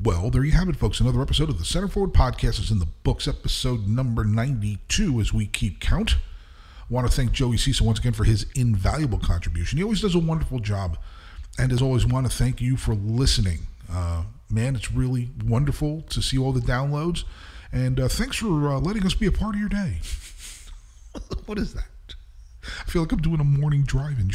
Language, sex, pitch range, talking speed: English, male, 100-145 Hz, 210 wpm